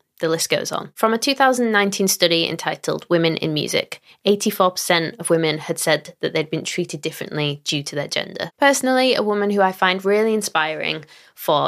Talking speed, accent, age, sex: 180 wpm, British, 20-39, female